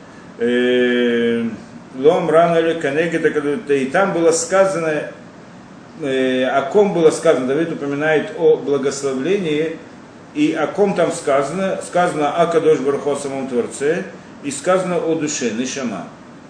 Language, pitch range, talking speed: Russian, 125-165 Hz, 100 wpm